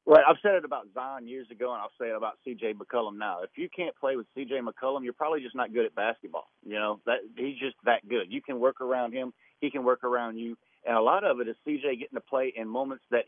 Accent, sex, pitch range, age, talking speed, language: American, male, 120-150 Hz, 40-59, 275 wpm, English